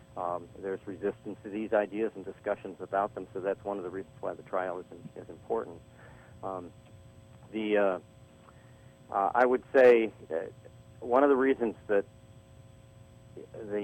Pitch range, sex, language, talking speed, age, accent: 95-115 Hz, male, English, 160 wpm, 50-69, American